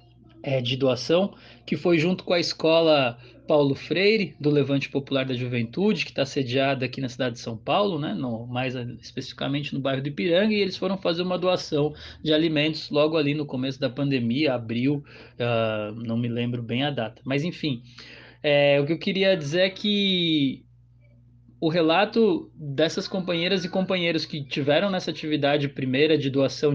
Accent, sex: Brazilian, male